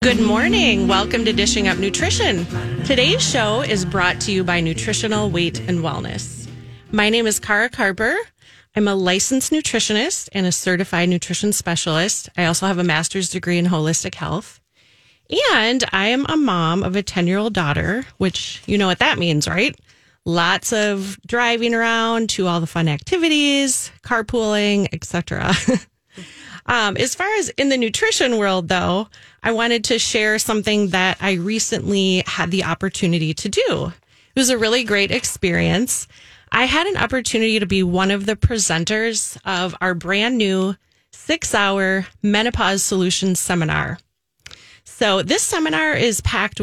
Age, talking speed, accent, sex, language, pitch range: 30-49, 155 wpm, American, female, English, 180-225 Hz